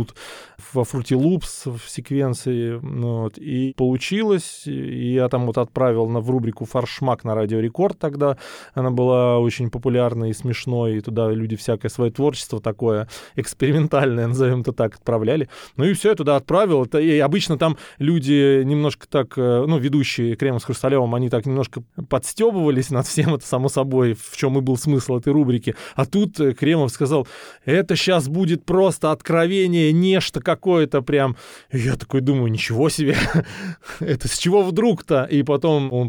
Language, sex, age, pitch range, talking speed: Russian, male, 20-39, 120-155 Hz, 160 wpm